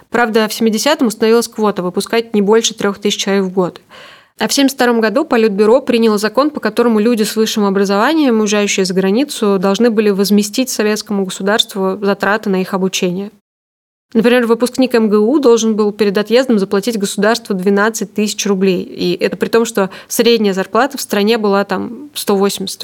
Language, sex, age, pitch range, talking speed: Russian, female, 20-39, 200-235 Hz, 160 wpm